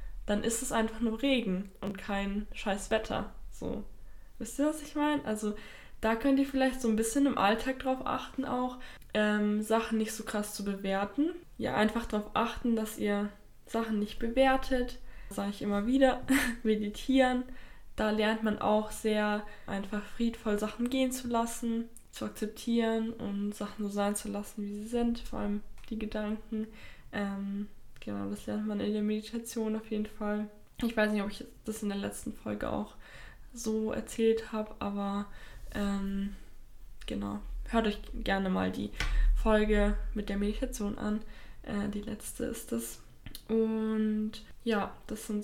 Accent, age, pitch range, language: German, 20-39, 205-235 Hz, German